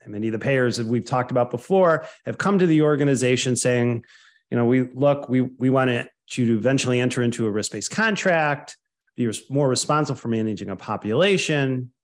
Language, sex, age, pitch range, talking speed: English, male, 40-59, 120-165 Hz, 190 wpm